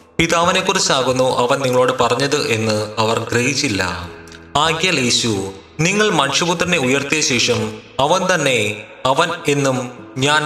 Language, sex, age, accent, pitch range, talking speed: Malayalam, male, 20-39, native, 115-160 Hz, 100 wpm